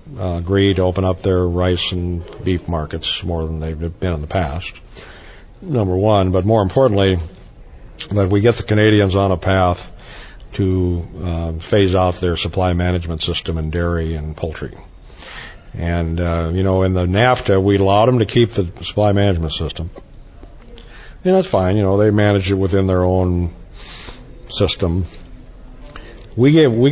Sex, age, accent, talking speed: male, 60-79, American, 165 wpm